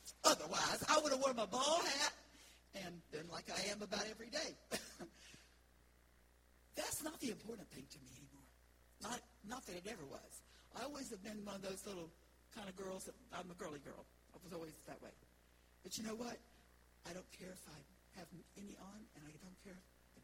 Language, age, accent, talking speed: English, 60-79, American, 205 wpm